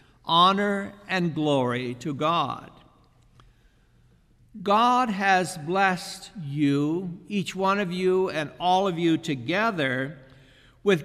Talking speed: 105 wpm